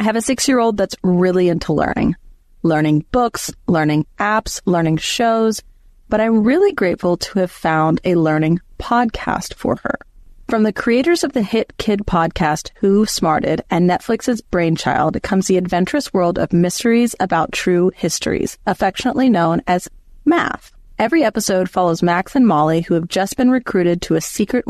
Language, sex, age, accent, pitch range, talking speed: English, female, 30-49, American, 175-230 Hz, 165 wpm